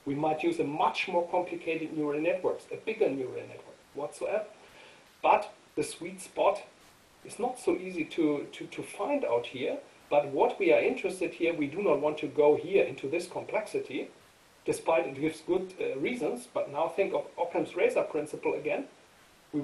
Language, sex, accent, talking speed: English, male, German, 180 wpm